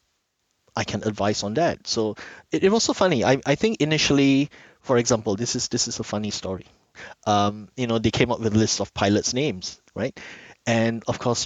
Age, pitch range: 30-49, 100-120 Hz